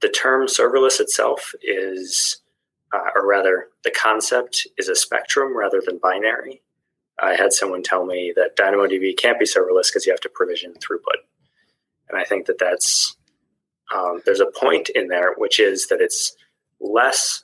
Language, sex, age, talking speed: English, male, 20-39, 165 wpm